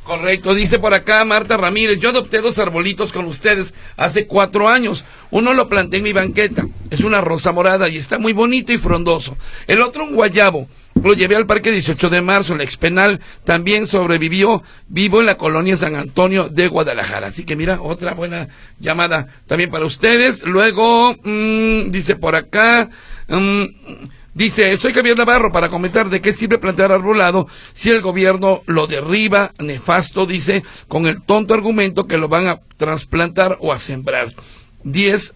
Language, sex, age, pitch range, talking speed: Spanish, male, 50-69, 170-215 Hz, 165 wpm